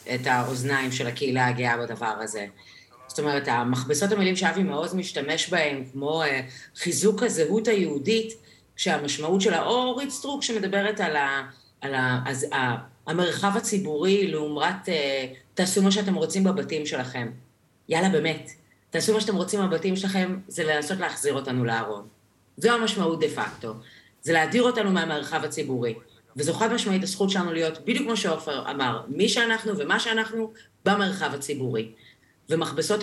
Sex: female